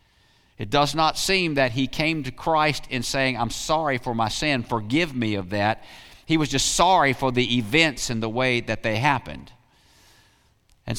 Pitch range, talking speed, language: 110-145 Hz, 185 wpm, English